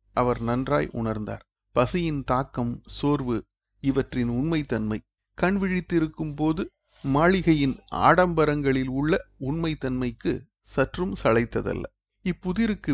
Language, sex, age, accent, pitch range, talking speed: Tamil, male, 50-69, native, 120-160 Hz, 85 wpm